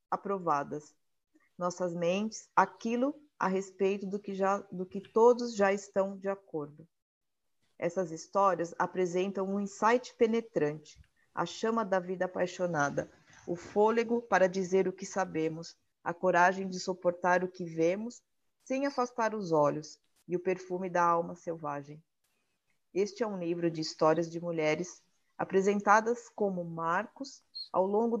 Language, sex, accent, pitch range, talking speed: Portuguese, female, Brazilian, 170-205 Hz, 130 wpm